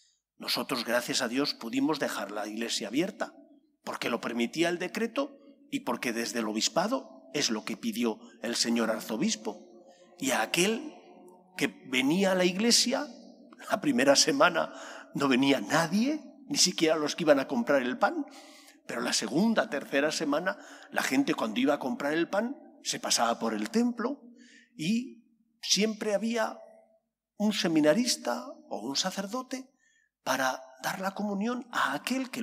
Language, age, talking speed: English, 50-69, 150 wpm